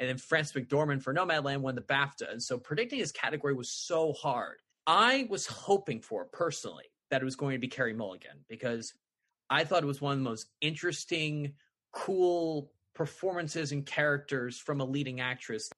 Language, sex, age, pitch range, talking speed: English, male, 20-39, 130-165 Hz, 185 wpm